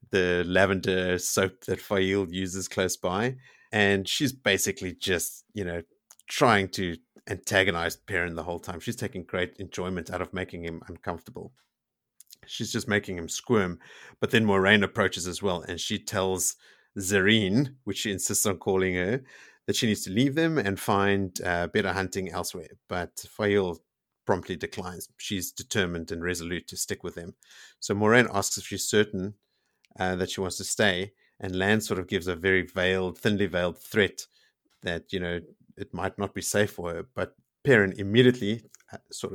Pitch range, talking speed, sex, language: 90-105 Hz, 170 wpm, male, English